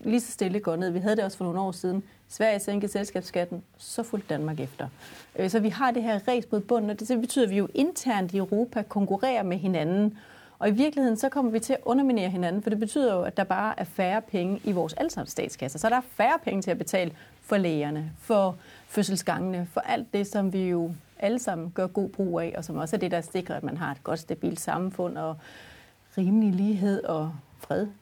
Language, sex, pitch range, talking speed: Danish, female, 180-225 Hz, 225 wpm